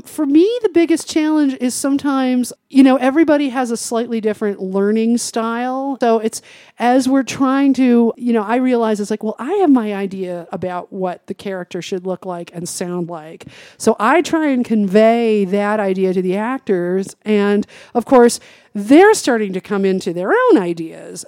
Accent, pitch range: American, 190-240 Hz